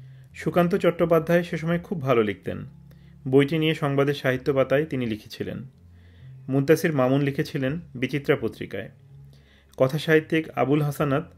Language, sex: Bengali, male